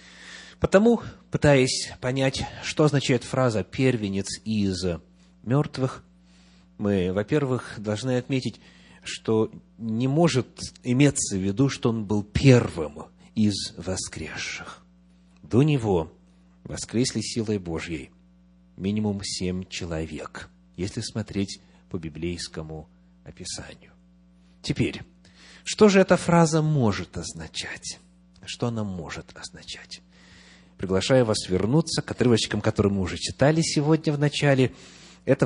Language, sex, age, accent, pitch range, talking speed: Russian, male, 30-49, native, 90-140 Hz, 105 wpm